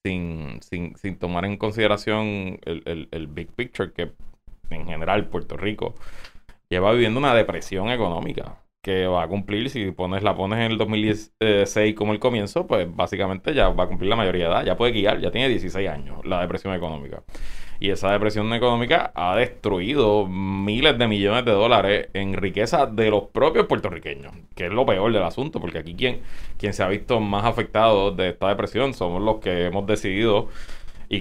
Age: 20-39